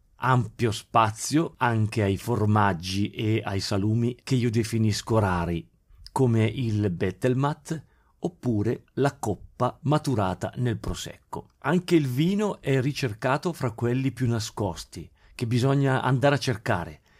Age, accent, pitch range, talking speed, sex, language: 40-59, native, 100-130 Hz, 120 wpm, male, Italian